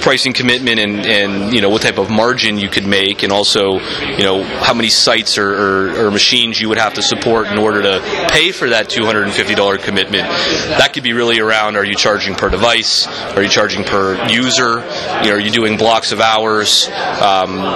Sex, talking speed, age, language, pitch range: male, 210 wpm, 30-49, English, 105-120 Hz